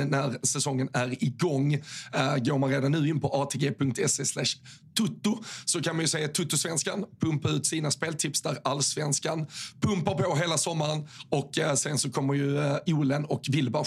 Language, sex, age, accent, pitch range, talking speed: Swedish, male, 30-49, native, 140-170 Hz, 165 wpm